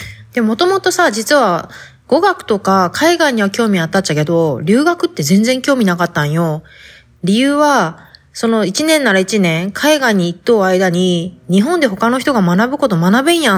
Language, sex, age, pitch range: Japanese, female, 20-39, 175-250 Hz